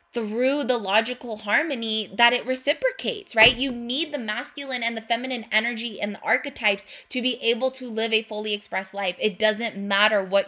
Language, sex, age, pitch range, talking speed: English, female, 20-39, 205-240 Hz, 185 wpm